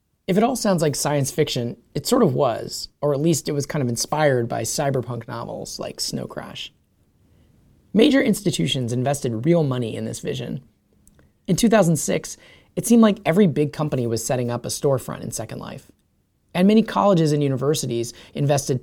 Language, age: English, 30-49